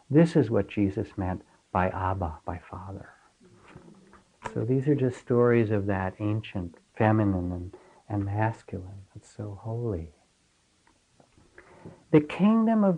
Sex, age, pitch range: male, 60-79, 100-150 Hz